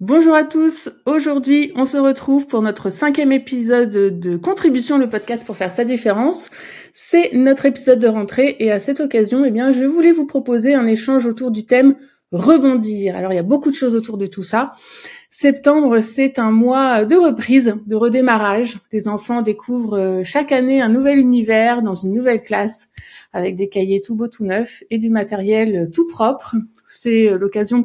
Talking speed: 190 wpm